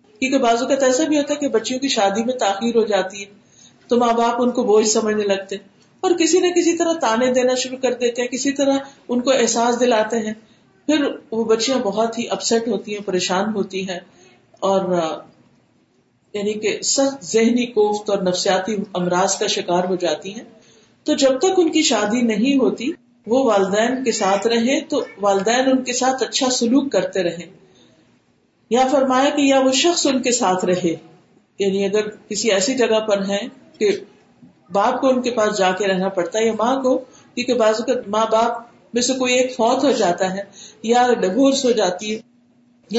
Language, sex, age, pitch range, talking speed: Urdu, female, 50-69, 205-260 Hz, 185 wpm